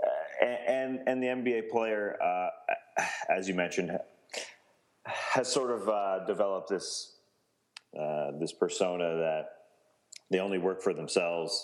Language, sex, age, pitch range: English, male, 30-49, 85-135 Hz